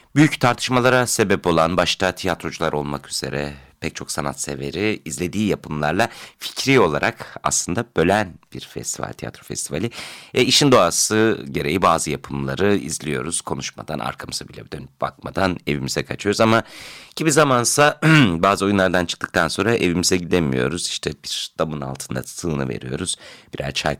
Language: Turkish